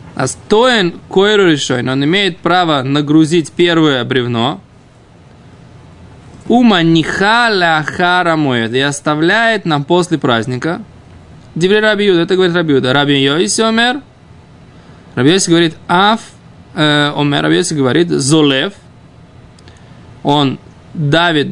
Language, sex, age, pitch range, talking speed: Russian, male, 20-39, 140-180 Hz, 80 wpm